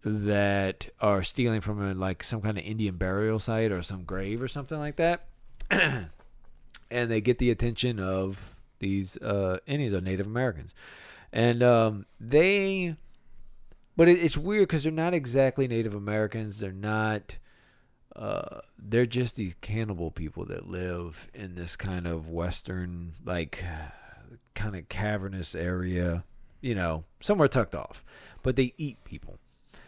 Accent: American